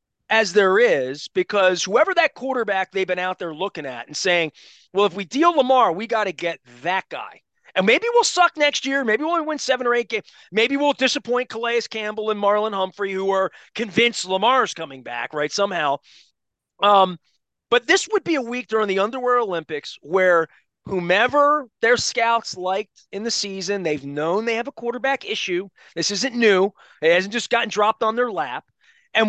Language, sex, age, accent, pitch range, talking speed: English, male, 30-49, American, 175-235 Hz, 190 wpm